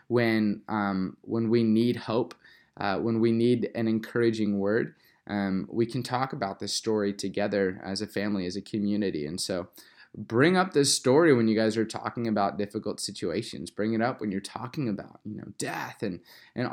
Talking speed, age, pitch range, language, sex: 190 wpm, 20-39, 105-125 Hz, English, male